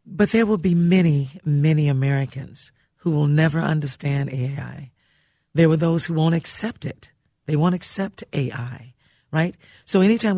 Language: English